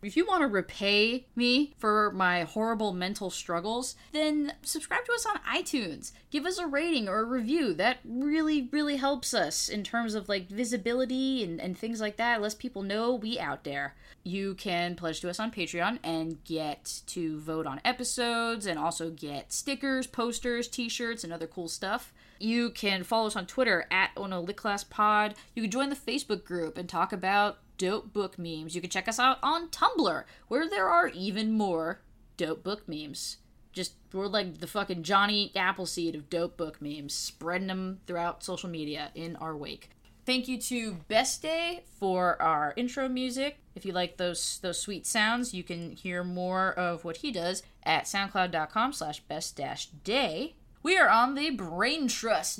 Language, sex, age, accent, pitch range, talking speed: English, female, 20-39, American, 175-250 Hz, 175 wpm